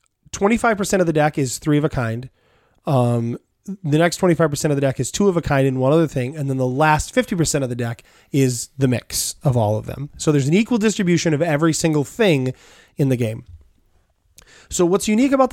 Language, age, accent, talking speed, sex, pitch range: English, 20-39, American, 215 wpm, male, 130-180 Hz